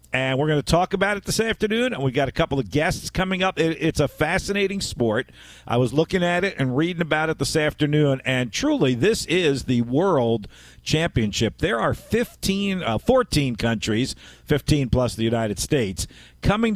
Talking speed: 185 wpm